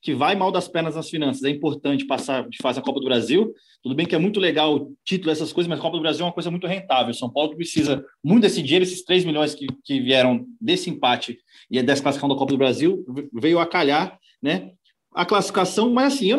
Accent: Brazilian